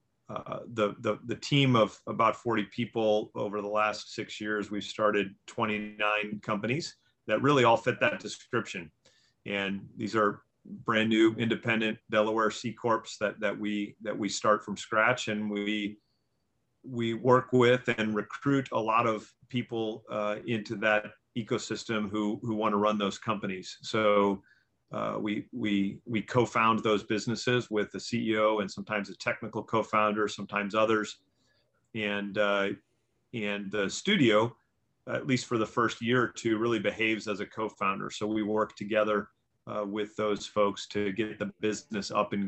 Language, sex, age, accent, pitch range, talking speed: English, male, 40-59, American, 105-115 Hz, 160 wpm